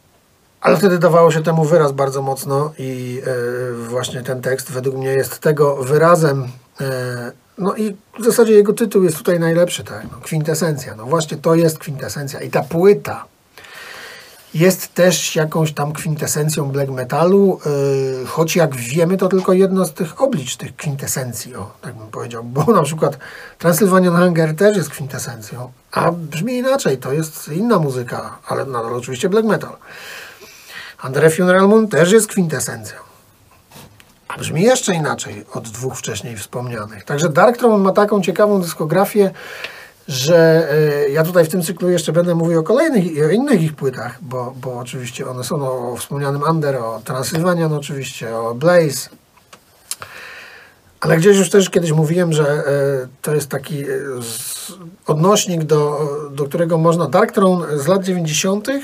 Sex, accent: male, native